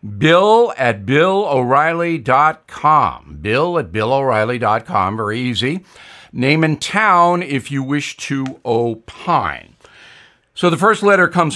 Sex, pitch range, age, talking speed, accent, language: male, 125-170 Hz, 60-79, 110 wpm, American, English